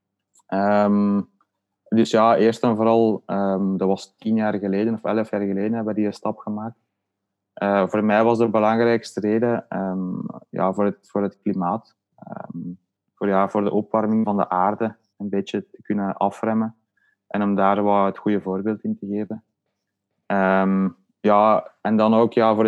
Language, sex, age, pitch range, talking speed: Dutch, male, 20-39, 100-115 Hz, 175 wpm